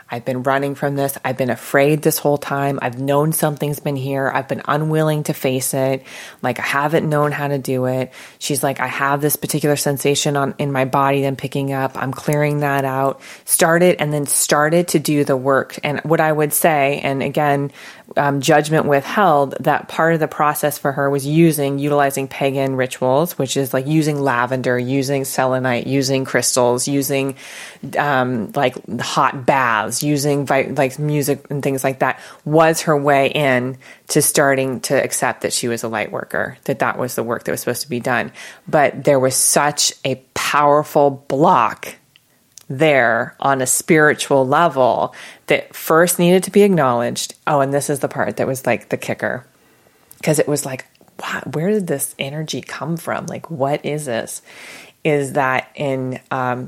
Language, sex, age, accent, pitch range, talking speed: English, female, 20-39, American, 130-150 Hz, 180 wpm